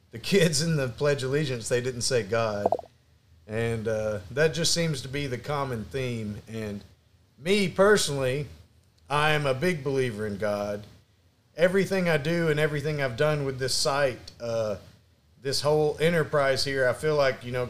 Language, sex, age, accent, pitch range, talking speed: English, male, 40-59, American, 115-150 Hz, 175 wpm